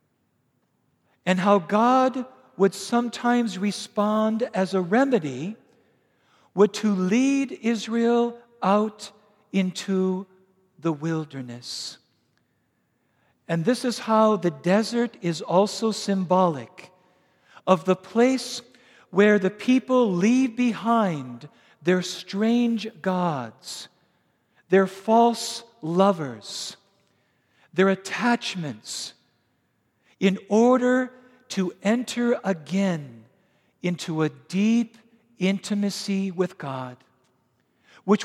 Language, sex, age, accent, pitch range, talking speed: English, male, 50-69, American, 180-225 Hz, 85 wpm